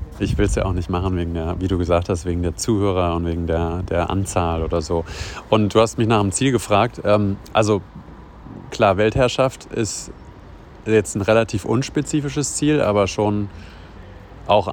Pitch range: 90-110 Hz